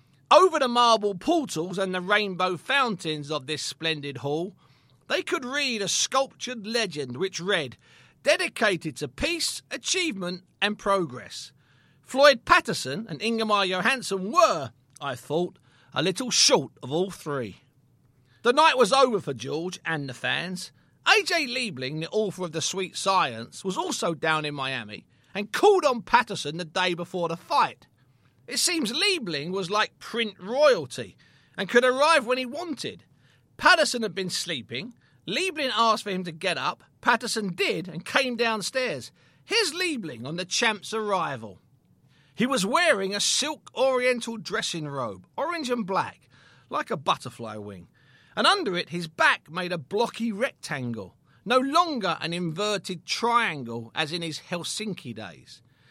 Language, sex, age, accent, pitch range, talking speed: English, male, 40-59, British, 150-240 Hz, 150 wpm